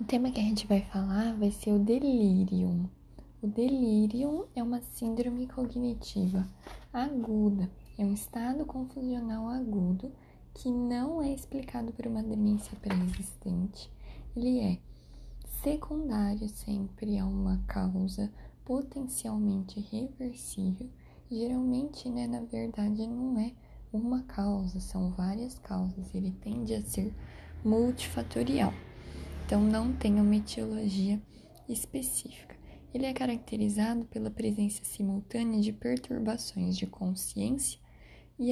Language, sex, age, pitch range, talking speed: Portuguese, female, 10-29, 195-240 Hz, 115 wpm